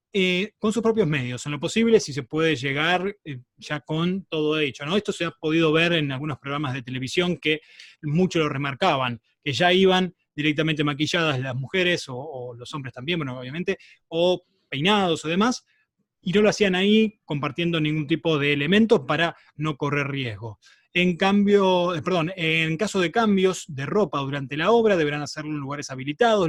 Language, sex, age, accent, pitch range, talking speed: Spanish, male, 20-39, Argentinian, 145-185 Hz, 185 wpm